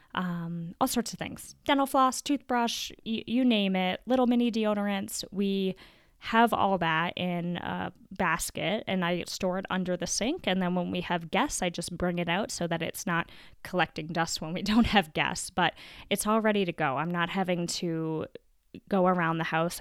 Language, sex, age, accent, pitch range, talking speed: English, female, 10-29, American, 165-195 Hz, 195 wpm